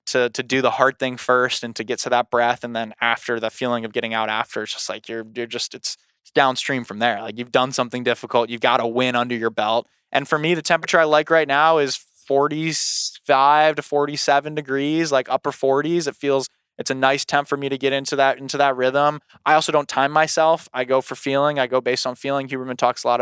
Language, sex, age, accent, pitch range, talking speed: English, male, 20-39, American, 120-145 Hz, 245 wpm